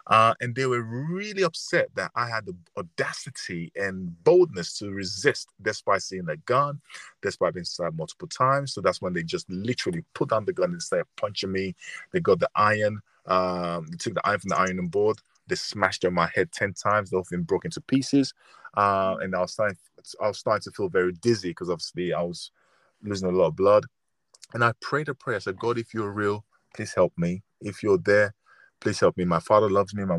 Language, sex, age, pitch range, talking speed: English, male, 20-39, 95-135 Hz, 225 wpm